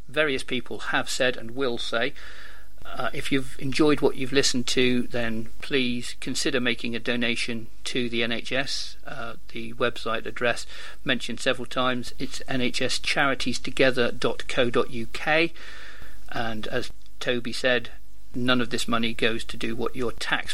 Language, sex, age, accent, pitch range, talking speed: English, male, 50-69, British, 120-155 Hz, 135 wpm